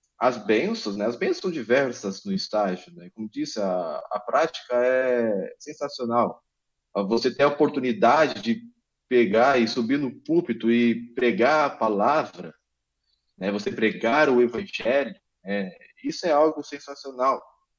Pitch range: 110-185 Hz